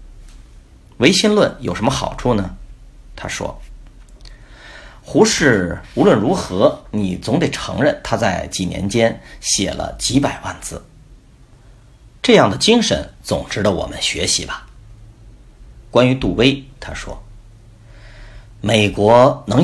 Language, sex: Chinese, male